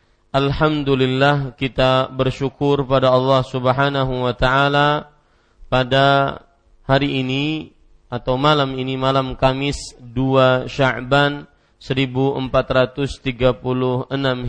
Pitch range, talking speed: 125-140 Hz, 80 wpm